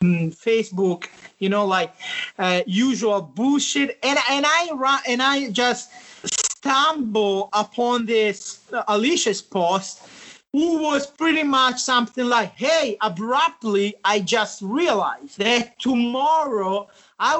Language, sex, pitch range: English, male, 210-275 Hz